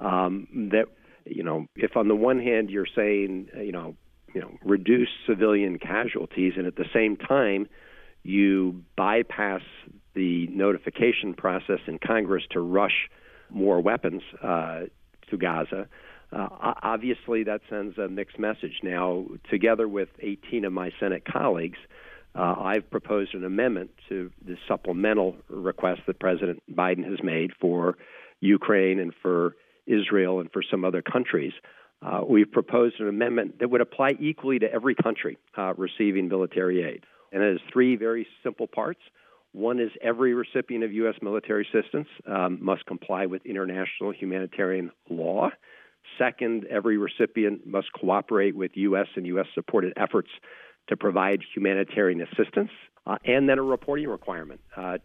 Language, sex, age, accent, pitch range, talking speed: English, male, 50-69, American, 95-115 Hz, 145 wpm